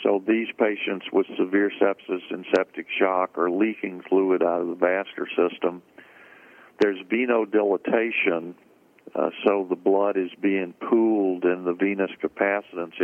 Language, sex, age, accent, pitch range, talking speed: English, male, 50-69, American, 90-100 Hz, 140 wpm